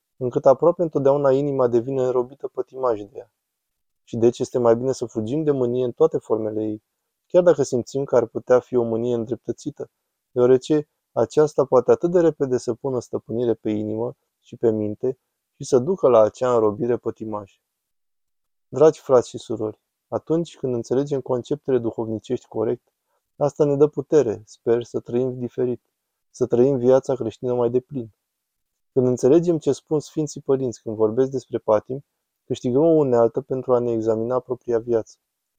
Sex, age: male, 20-39